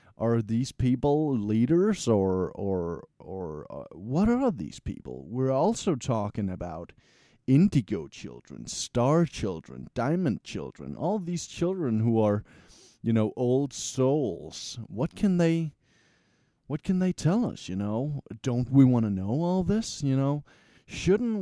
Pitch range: 110-160 Hz